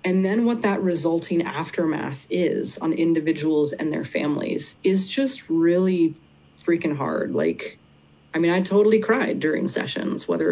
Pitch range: 165-195 Hz